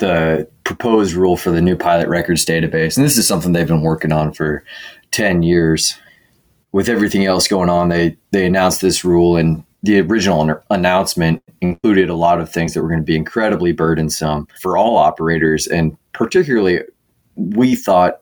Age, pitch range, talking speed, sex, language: 20-39, 80-90 Hz, 180 wpm, male, English